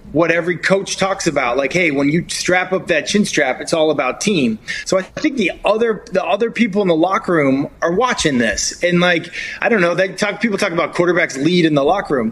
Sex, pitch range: male, 150-190 Hz